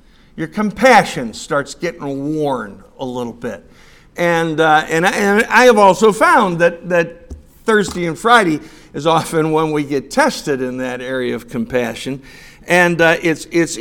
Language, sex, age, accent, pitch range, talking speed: English, male, 60-79, American, 140-185 Hz, 155 wpm